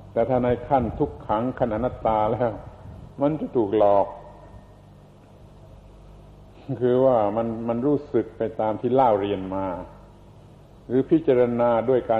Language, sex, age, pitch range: Thai, male, 70-89, 100-125 Hz